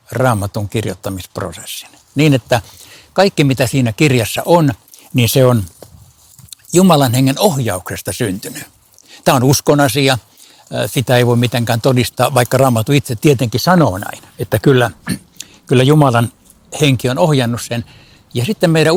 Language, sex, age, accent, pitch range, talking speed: Finnish, male, 60-79, native, 115-145 Hz, 135 wpm